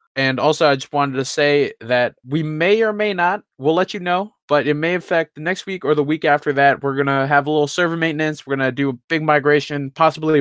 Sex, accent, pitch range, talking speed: male, American, 135-165 Hz, 260 wpm